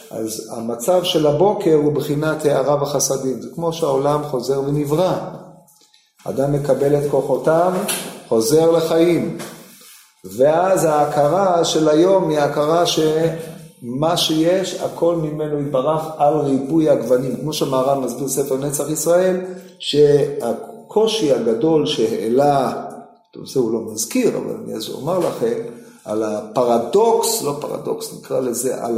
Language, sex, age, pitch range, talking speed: Hebrew, male, 50-69, 130-165 Hz, 120 wpm